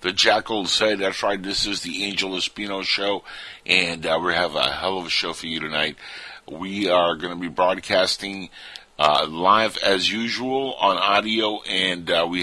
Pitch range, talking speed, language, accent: 85-105 Hz, 185 wpm, English, American